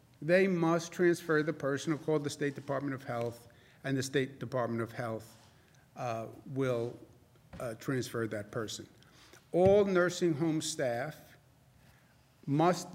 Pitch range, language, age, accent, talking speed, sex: 125-155 Hz, English, 50-69, American, 135 wpm, male